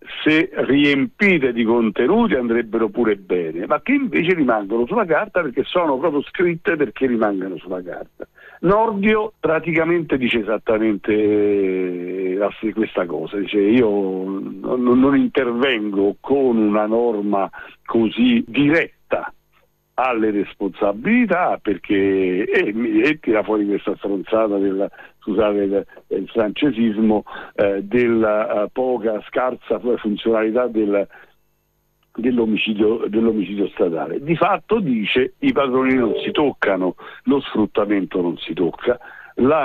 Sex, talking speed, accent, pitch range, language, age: male, 110 wpm, native, 100-130 Hz, Italian, 60-79